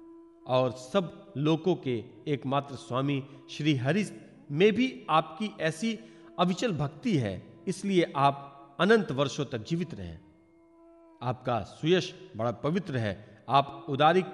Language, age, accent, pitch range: Hindi, 50-69, native, 135-195 Hz